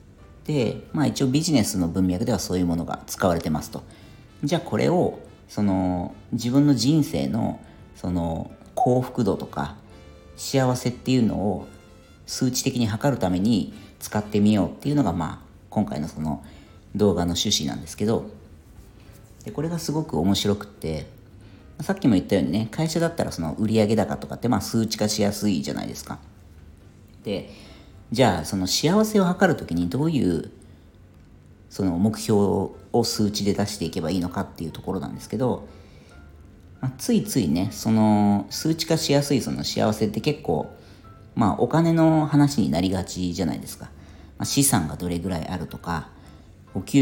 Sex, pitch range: female, 90-125 Hz